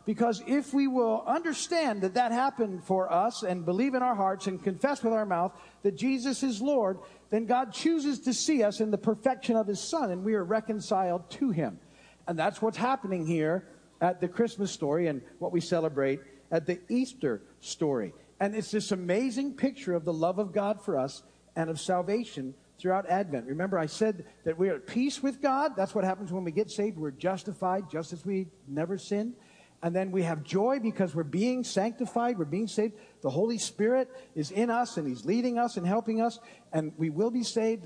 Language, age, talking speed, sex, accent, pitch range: English, 50-69, 205 wpm, male, American, 175-230 Hz